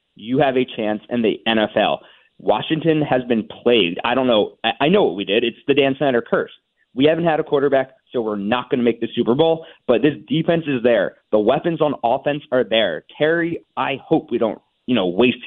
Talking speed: 225 wpm